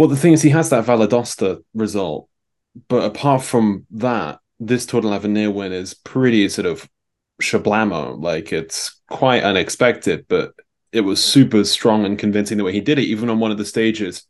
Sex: male